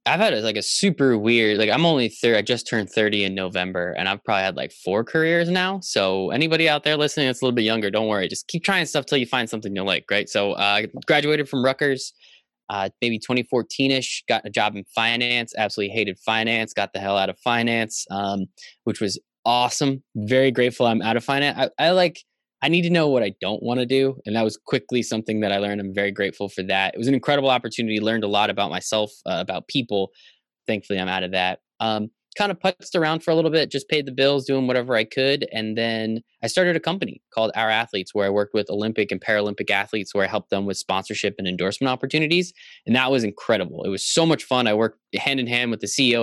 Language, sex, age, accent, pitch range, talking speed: English, male, 20-39, American, 105-140 Hz, 240 wpm